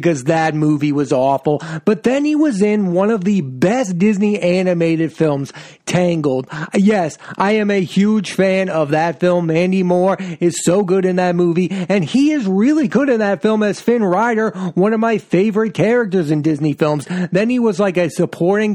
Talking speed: 190 wpm